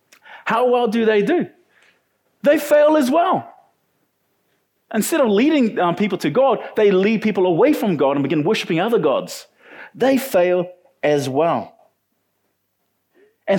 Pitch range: 180-250 Hz